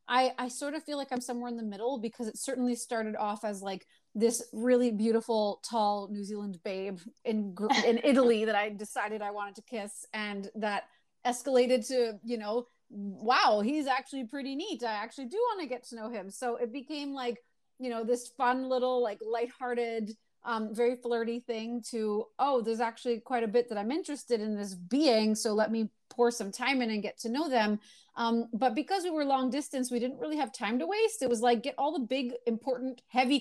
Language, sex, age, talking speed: English, female, 30-49, 210 wpm